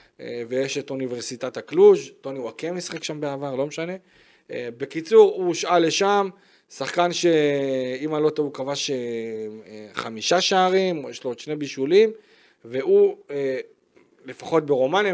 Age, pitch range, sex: 40-59, 140-190 Hz, male